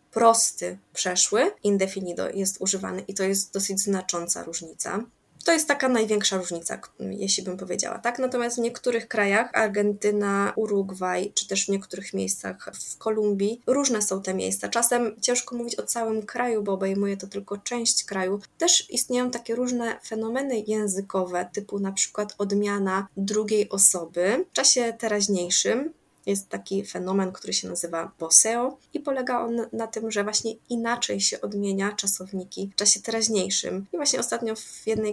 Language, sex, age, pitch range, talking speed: Polish, female, 20-39, 195-235 Hz, 155 wpm